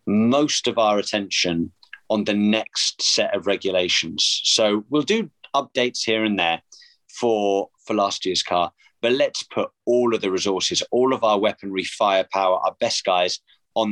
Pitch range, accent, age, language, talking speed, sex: 100-120 Hz, British, 30-49, English, 165 wpm, male